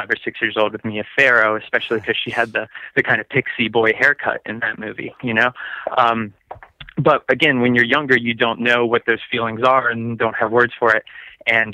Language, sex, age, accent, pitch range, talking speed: English, male, 20-39, American, 110-120 Hz, 220 wpm